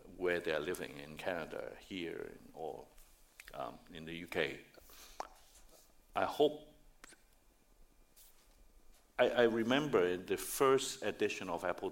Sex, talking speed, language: male, 110 wpm, English